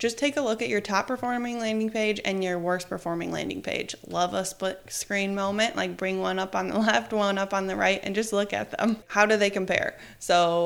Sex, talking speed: female, 240 wpm